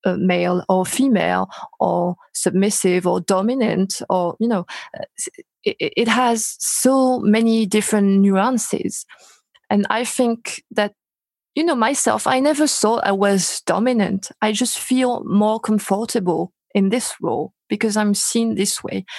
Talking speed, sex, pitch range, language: 140 wpm, female, 190-225 Hz, English